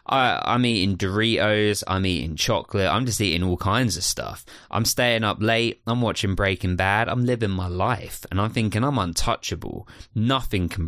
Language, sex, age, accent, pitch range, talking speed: English, male, 20-39, British, 90-110 Hz, 175 wpm